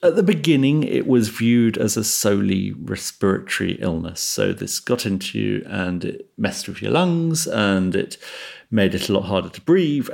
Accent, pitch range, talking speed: British, 100-125 Hz, 185 wpm